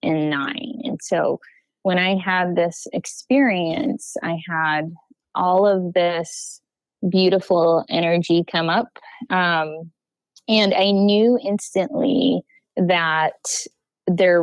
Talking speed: 105 wpm